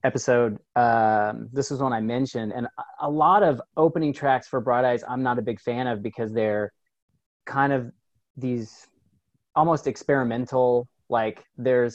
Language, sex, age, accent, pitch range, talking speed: English, male, 30-49, American, 115-140 Hz, 155 wpm